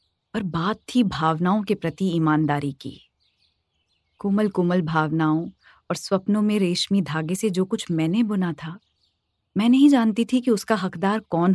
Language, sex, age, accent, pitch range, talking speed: Hindi, female, 30-49, native, 155-220 Hz, 155 wpm